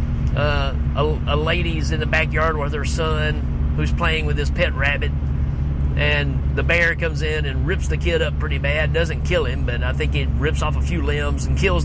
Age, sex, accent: 30-49, male, American